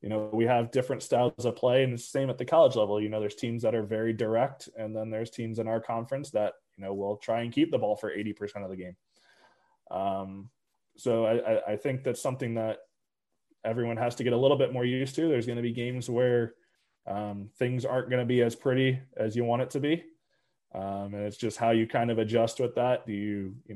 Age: 20-39